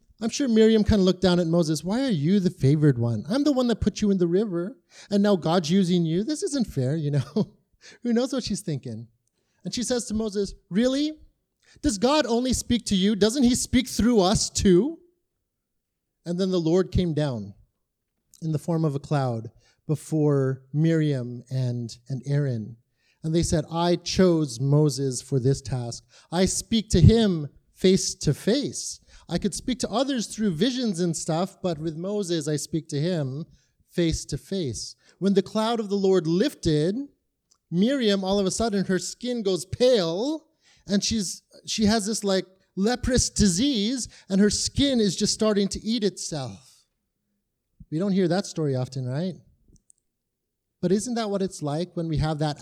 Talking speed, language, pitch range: 180 wpm, English, 150-215 Hz